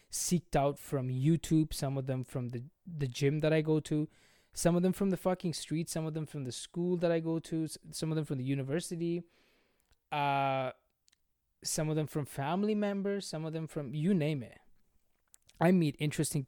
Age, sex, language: 20-39, male, English